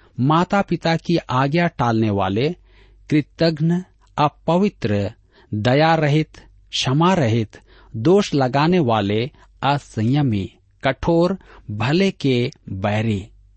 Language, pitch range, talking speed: Hindi, 105-160 Hz, 90 wpm